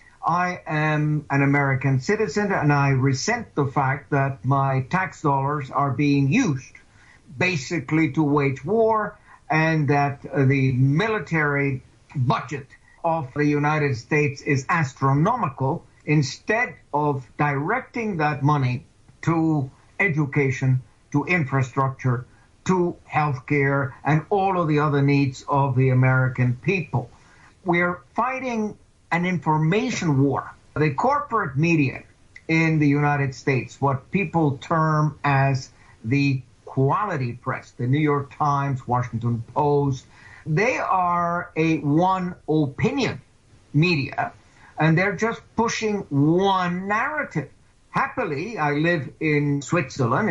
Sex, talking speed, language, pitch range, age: male, 115 wpm, English, 135-160 Hz, 60-79